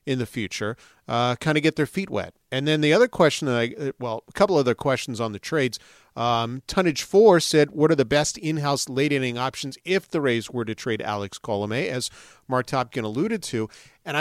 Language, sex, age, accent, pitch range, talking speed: English, male, 40-59, American, 115-145 Hz, 215 wpm